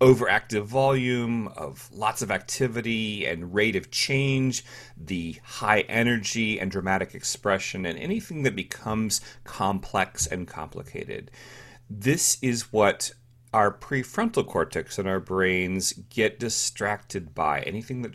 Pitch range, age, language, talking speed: 95-130 Hz, 30-49, English, 120 wpm